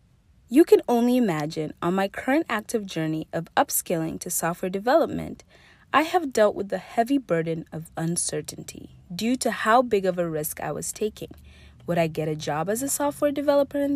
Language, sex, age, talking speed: English, female, 30-49, 185 wpm